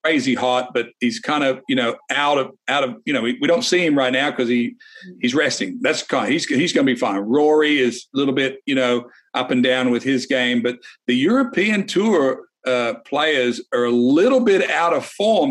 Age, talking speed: 50-69, 230 wpm